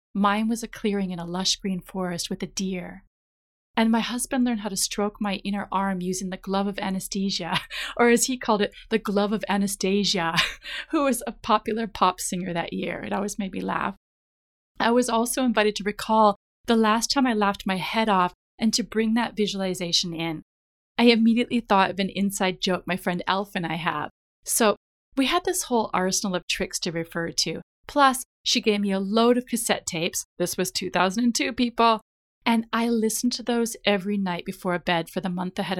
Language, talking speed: English, 200 wpm